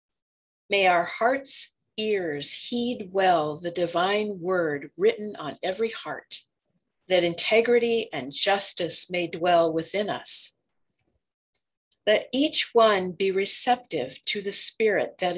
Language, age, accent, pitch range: English, 50-69, American, 170-220 Hz